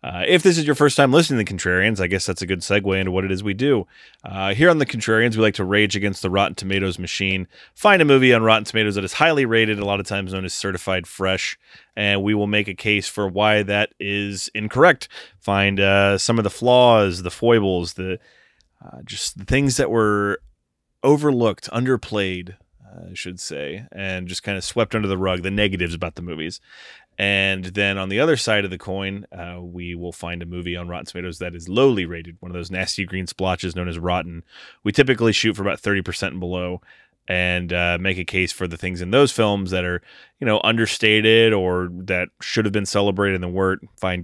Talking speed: 220 wpm